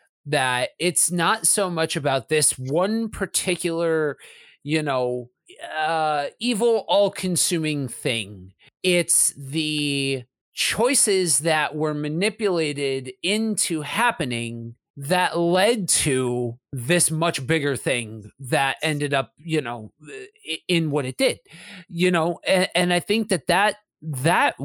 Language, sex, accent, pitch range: English, male, American, 140-180 Hz